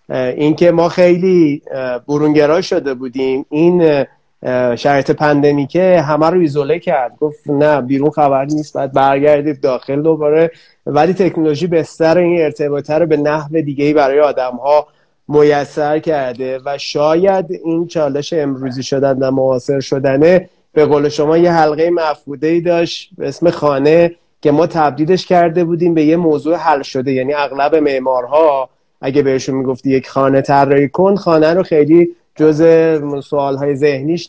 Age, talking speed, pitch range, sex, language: 30-49, 140 wpm, 135-160 Hz, male, Persian